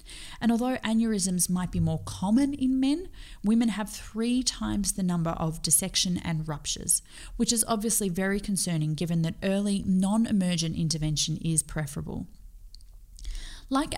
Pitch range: 155-205 Hz